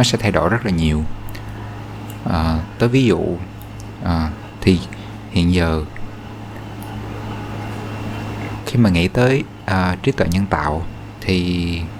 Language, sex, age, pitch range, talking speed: Vietnamese, male, 20-39, 90-110 Hz, 125 wpm